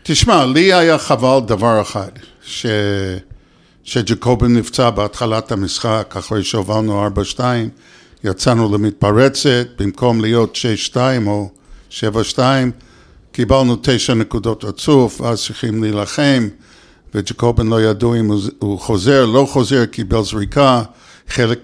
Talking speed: 110 wpm